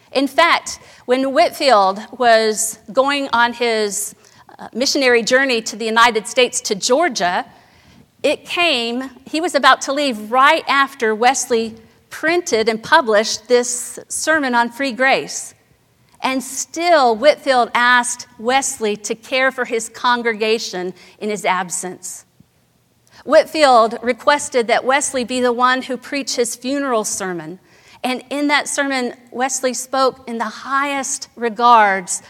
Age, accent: 50-69, American